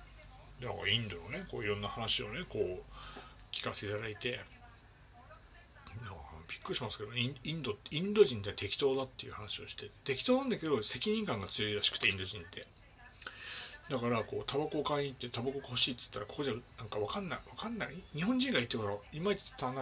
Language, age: Japanese, 60-79